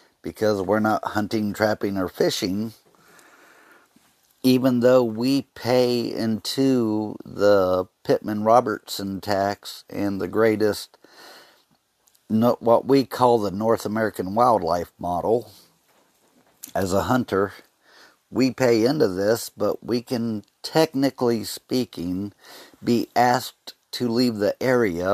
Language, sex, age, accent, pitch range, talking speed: English, male, 50-69, American, 95-115 Hz, 105 wpm